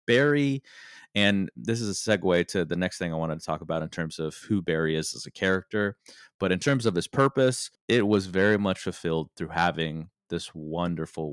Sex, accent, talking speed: male, American, 205 wpm